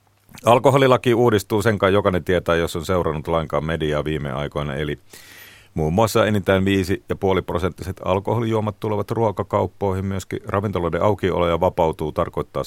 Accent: native